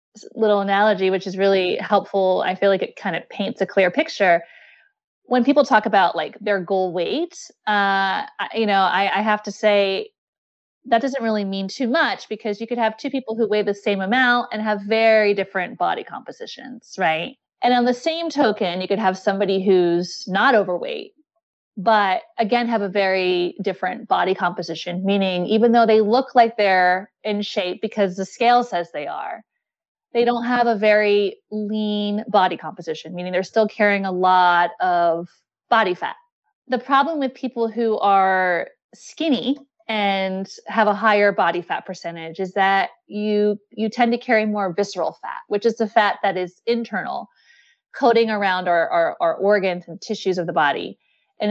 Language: English